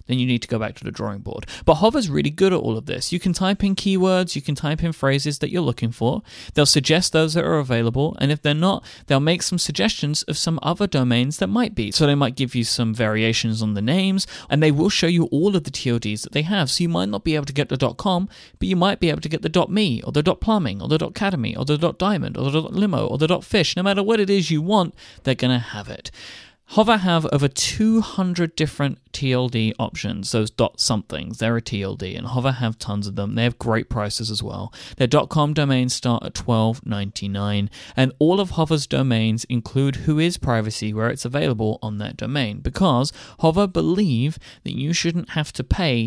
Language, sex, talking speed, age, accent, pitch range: English, male, 230 wpm, 30-49, British, 115-170 Hz